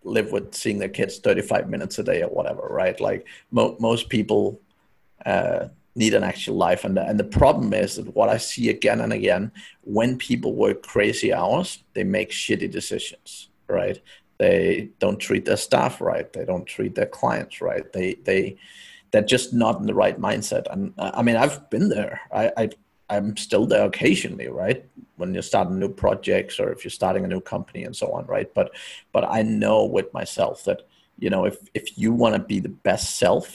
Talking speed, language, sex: 200 wpm, English, male